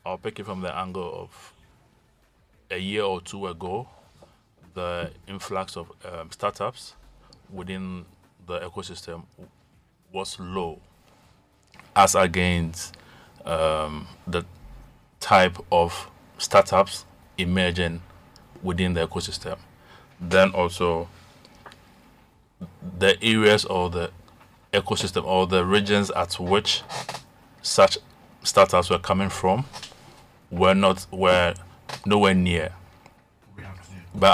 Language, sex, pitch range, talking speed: English, male, 90-100 Hz, 100 wpm